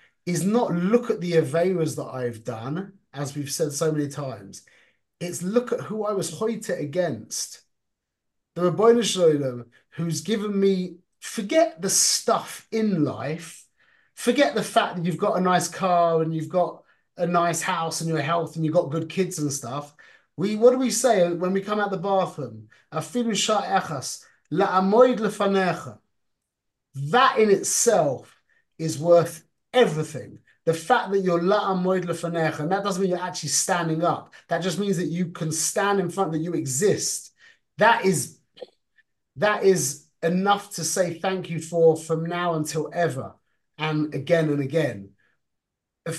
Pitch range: 160-200 Hz